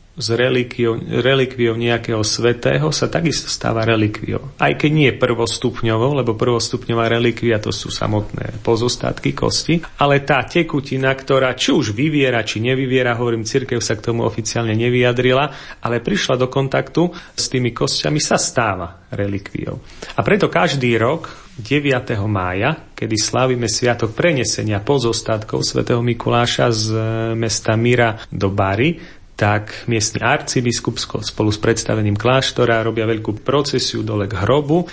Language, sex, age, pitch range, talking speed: Slovak, male, 40-59, 110-130 Hz, 130 wpm